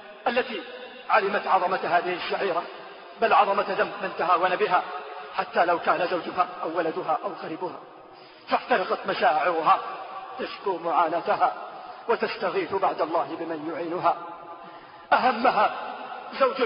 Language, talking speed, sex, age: English, 100 wpm, male, 50-69